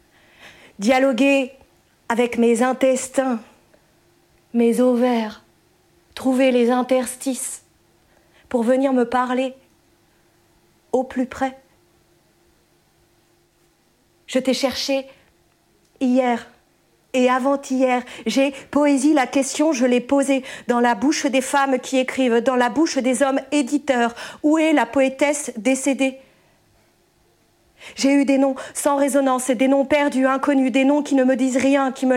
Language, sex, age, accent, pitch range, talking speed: French, female, 50-69, French, 255-285 Hz, 125 wpm